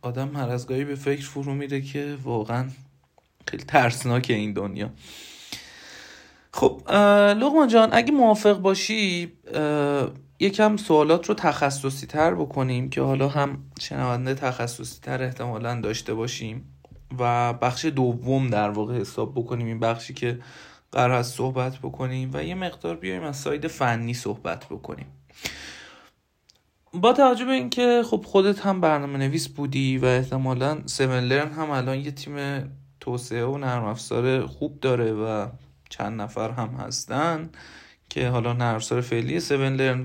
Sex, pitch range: male, 120-150 Hz